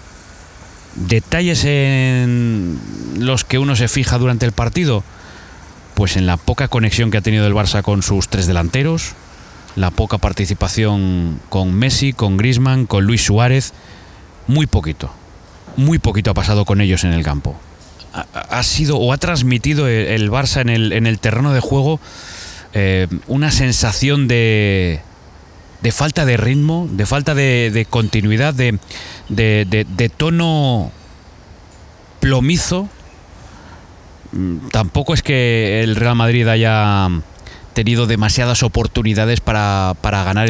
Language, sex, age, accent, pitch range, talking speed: Spanish, male, 30-49, Spanish, 95-125 Hz, 130 wpm